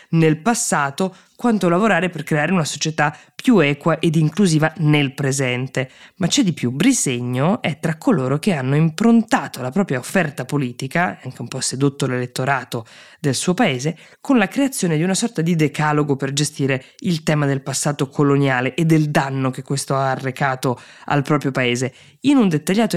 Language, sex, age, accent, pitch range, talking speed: Italian, female, 20-39, native, 135-170 Hz, 170 wpm